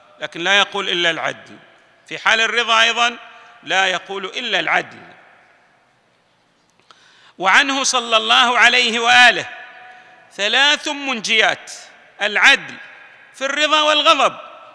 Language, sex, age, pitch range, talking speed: Arabic, male, 40-59, 205-275 Hz, 100 wpm